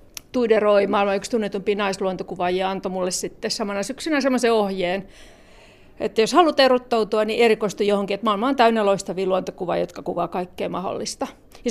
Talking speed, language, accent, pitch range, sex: 150 wpm, Finnish, native, 200-250 Hz, female